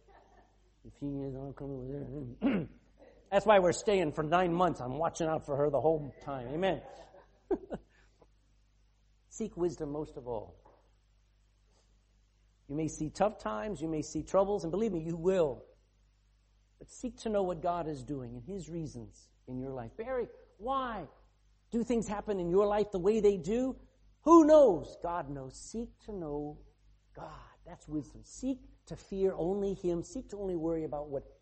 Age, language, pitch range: 50-69, English, 115-195 Hz